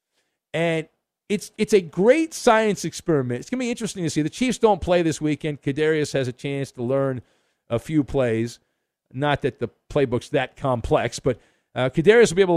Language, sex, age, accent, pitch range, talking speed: English, male, 50-69, American, 135-175 Hz, 195 wpm